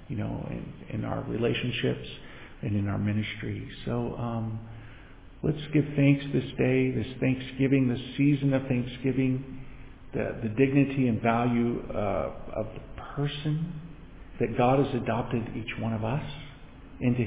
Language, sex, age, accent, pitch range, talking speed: English, male, 50-69, American, 105-130 Hz, 145 wpm